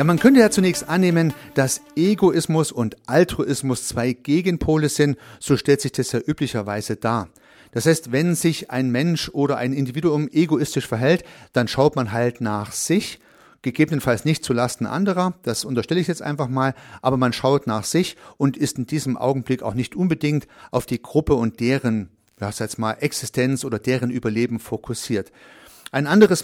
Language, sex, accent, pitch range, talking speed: German, male, German, 120-150 Hz, 165 wpm